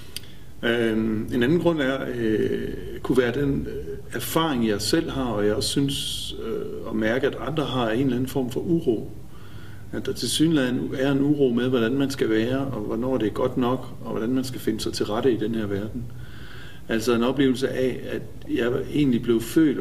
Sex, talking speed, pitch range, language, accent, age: male, 205 wpm, 110-135 Hz, Danish, native, 50-69